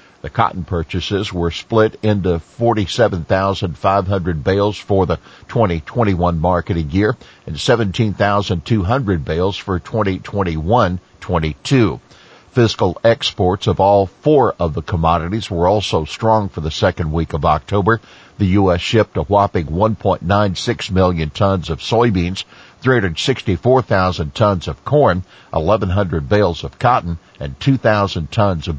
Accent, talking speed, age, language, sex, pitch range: American, 120 wpm, 50-69, English, male, 90-110 Hz